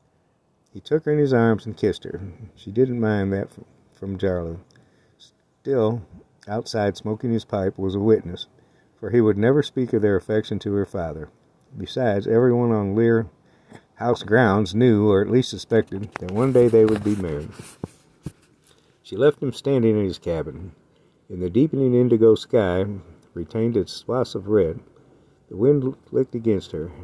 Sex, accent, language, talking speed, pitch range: male, American, English, 165 wpm, 100-120 Hz